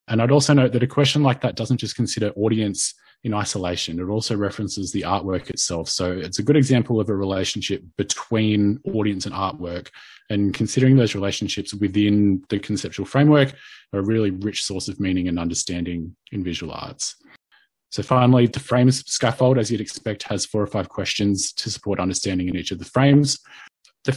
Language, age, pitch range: English, 20-39, 95-115 Hz